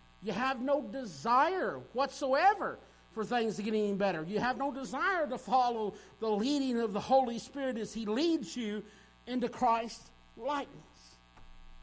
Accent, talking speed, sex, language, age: American, 150 wpm, male, English, 50-69